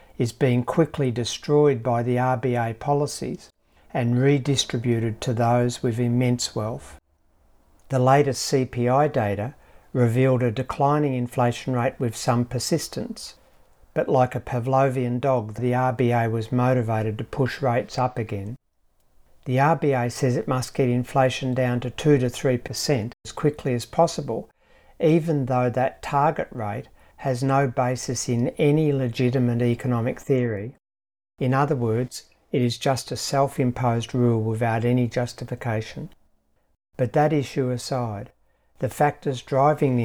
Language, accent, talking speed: English, Australian, 135 wpm